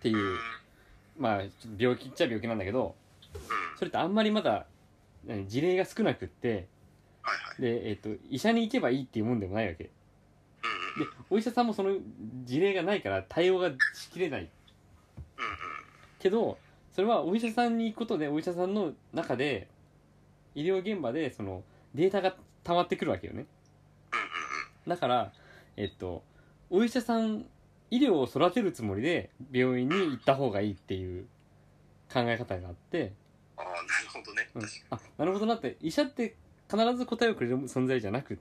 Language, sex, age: Japanese, male, 20-39